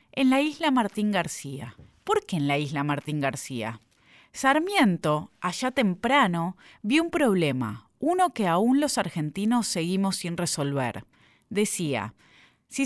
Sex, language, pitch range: female, Spanish, 155-250 Hz